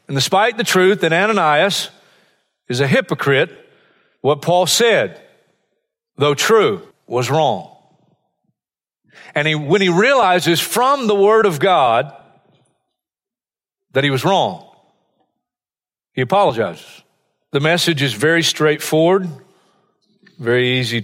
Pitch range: 145-195 Hz